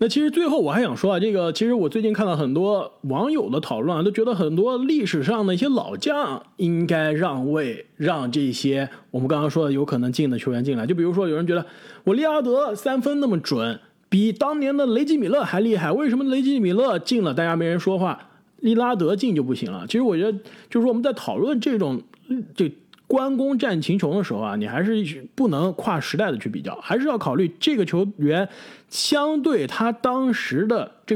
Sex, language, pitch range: male, Chinese, 160-245 Hz